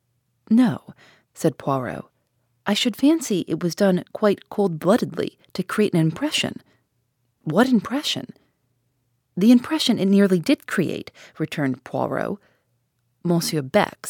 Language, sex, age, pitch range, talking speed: English, female, 40-59, 150-225 Hz, 115 wpm